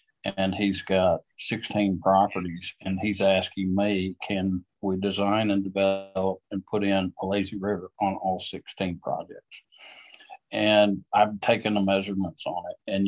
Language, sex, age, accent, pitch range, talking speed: English, male, 50-69, American, 95-100 Hz, 145 wpm